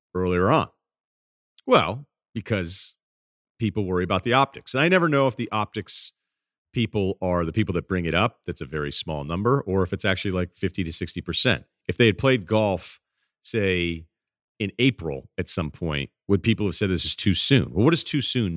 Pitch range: 80-105 Hz